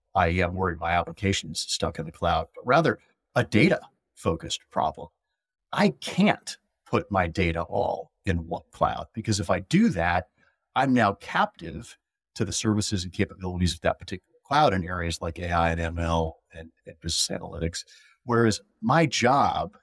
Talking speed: 165 wpm